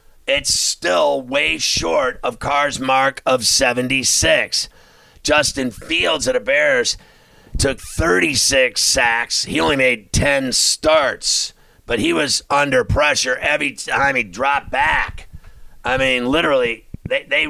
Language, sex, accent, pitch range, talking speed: English, male, American, 120-140 Hz, 125 wpm